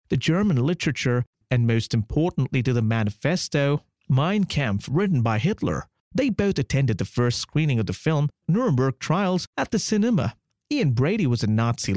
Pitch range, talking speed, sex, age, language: 120-180 Hz, 165 wpm, male, 30-49, English